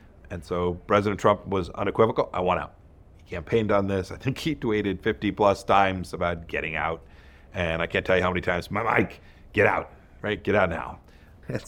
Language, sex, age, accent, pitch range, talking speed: English, male, 50-69, American, 85-105 Hz, 205 wpm